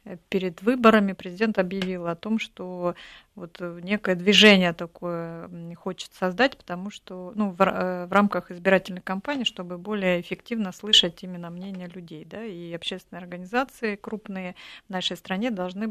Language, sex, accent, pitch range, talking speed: Russian, female, native, 180-215 Hz, 125 wpm